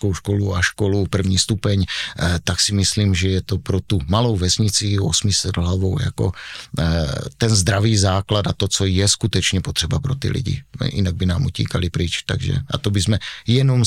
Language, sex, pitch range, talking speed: Czech, male, 95-110 Hz, 170 wpm